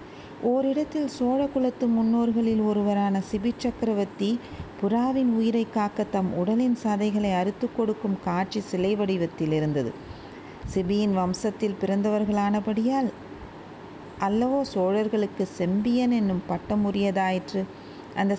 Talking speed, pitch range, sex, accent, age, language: 90 wpm, 180-225 Hz, female, native, 40-59, Tamil